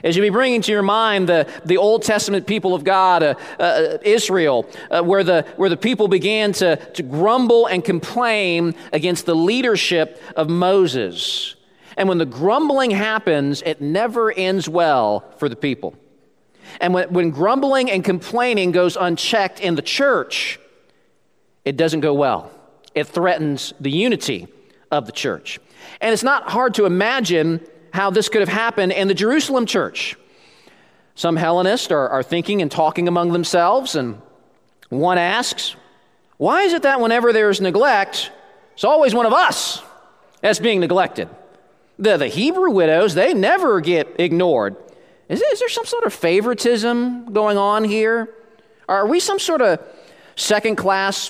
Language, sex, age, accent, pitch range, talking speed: English, male, 40-59, American, 175-230 Hz, 155 wpm